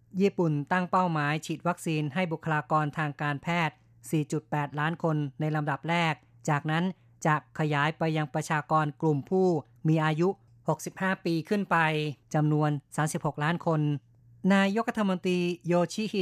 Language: Thai